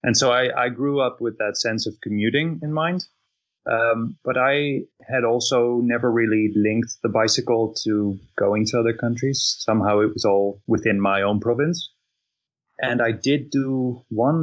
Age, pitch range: 20-39, 110-130 Hz